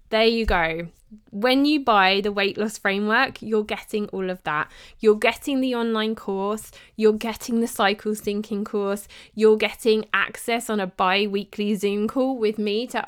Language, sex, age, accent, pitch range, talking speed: English, female, 20-39, British, 200-245 Hz, 170 wpm